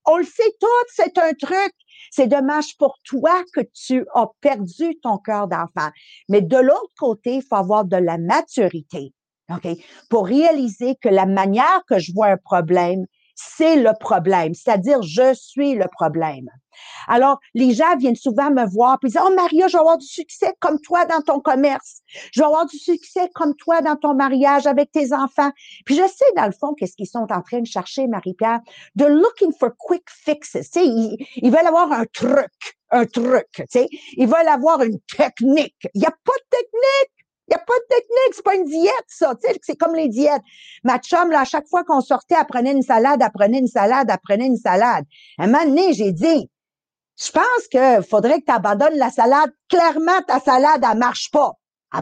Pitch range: 230-325 Hz